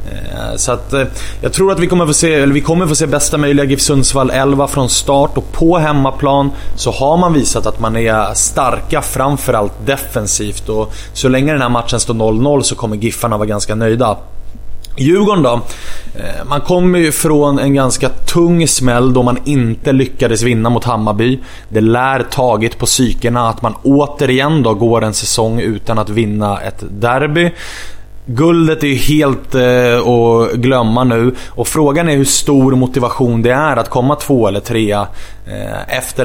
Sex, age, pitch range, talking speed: male, 20-39, 115-140 Hz, 170 wpm